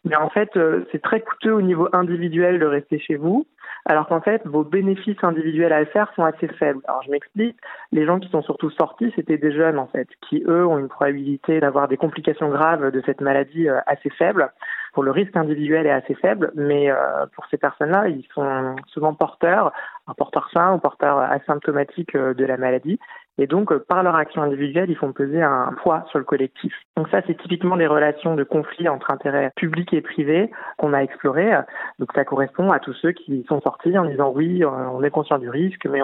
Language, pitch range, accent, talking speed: French, 140-170 Hz, French, 210 wpm